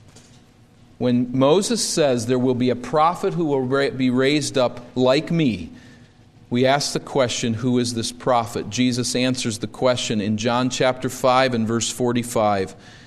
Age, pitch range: 40-59, 120-150 Hz